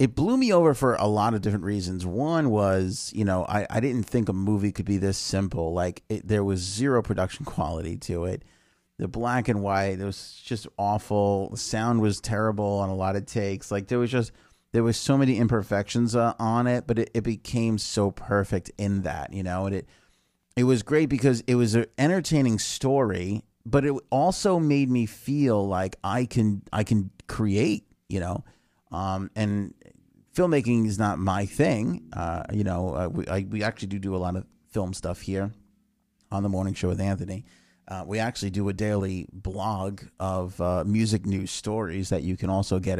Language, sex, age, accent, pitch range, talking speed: English, male, 30-49, American, 95-120 Hz, 200 wpm